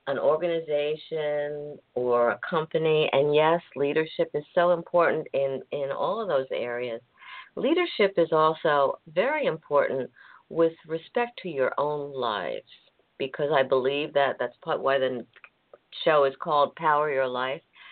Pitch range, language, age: 150-190 Hz, English, 50-69